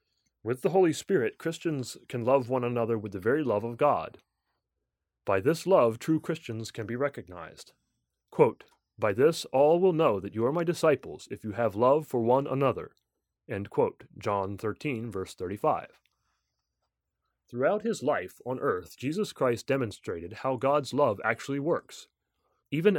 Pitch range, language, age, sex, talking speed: 110-165 Hz, English, 30-49, male, 160 wpm